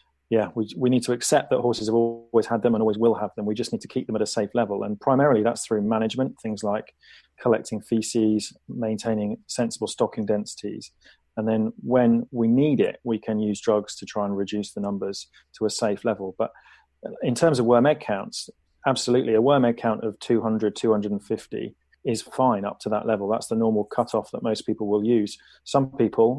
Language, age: English, 30-49